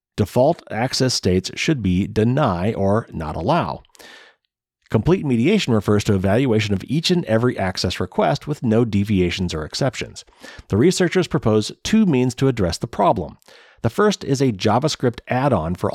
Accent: American